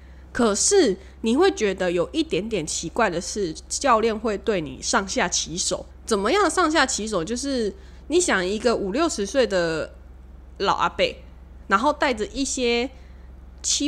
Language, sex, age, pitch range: Chinese, female, 20-39, 190-290 Hz